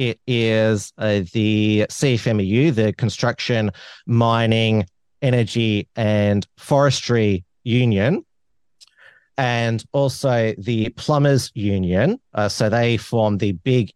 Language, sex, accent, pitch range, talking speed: English, male, Australian, 105-125 Hz, 100 wpm